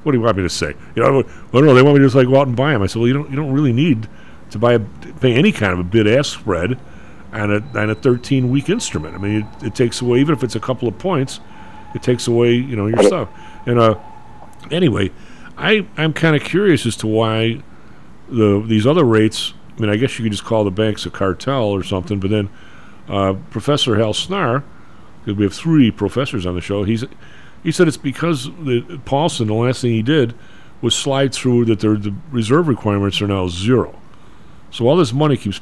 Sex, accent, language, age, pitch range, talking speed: male, American, English, 50-69, 105-135 Hz, 230 wpm